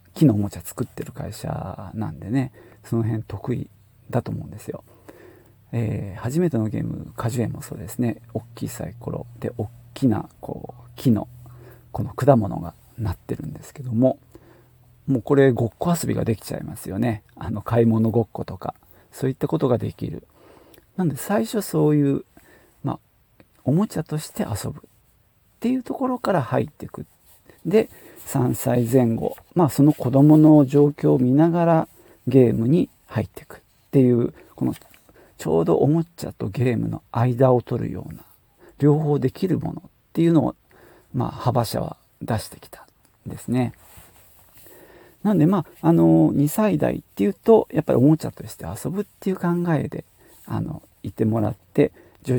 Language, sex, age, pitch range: Japanese, male, 40-59, 115-155 Hz